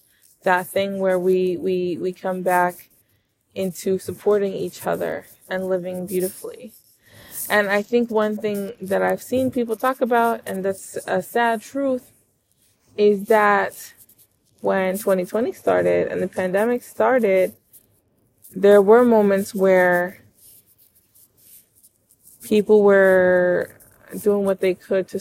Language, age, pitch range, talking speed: English, 20-39, 180-200 Hz, 120 wpm